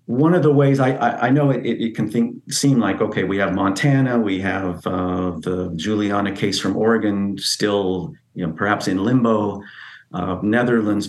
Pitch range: 90-110 Hz